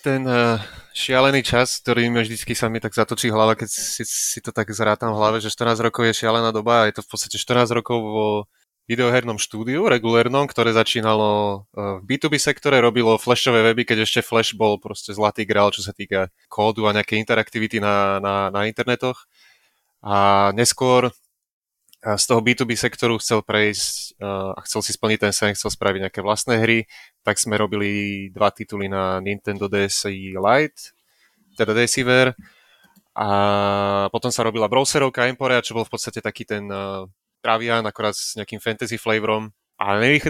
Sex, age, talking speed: male, 20-39, 170 wpm